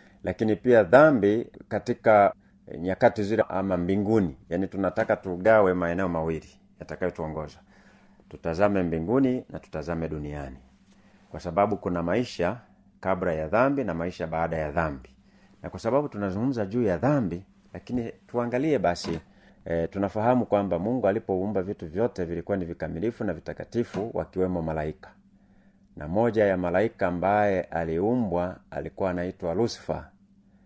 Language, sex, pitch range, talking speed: Swahili, male, 85-110 Hz, 125 wpm